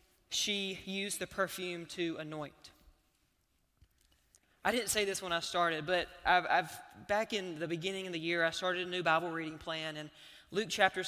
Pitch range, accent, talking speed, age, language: 165-195 Hz, American, 180 wpm, 20-39, English